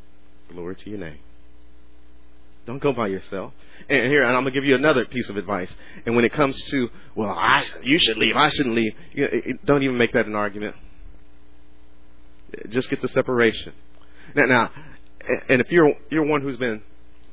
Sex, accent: male, American